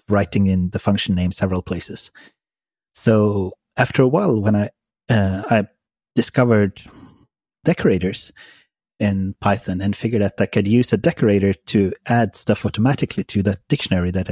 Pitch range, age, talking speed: 95-110 Hz, 30-49, 150 wpm